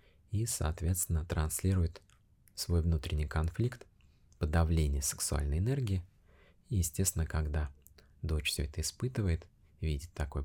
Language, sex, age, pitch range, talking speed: Russian, male, 20-39, 75-90 Hz, 105 wpm